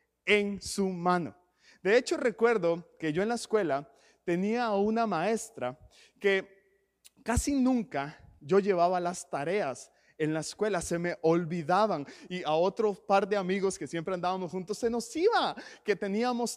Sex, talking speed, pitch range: male, 155 wpm, 180-235 Hz